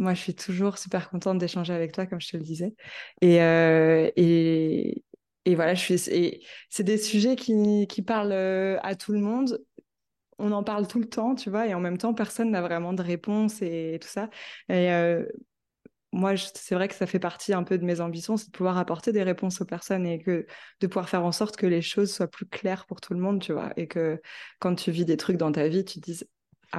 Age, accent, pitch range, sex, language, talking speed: 20-39, French, 170-200 Hz, female, French, 245 wpm